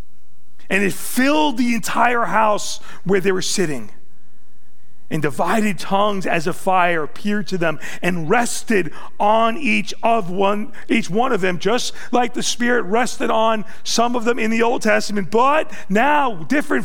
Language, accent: English, American